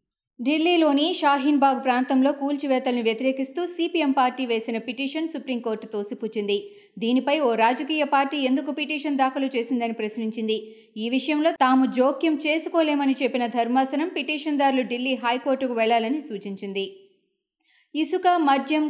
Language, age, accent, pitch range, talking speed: Telugu, 30-49, native, 230-285 Hz, 110 wpm